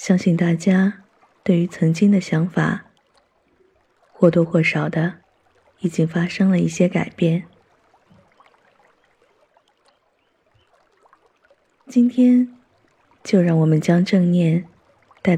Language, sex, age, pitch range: Chinese, female, 20-39, 165-190 Hz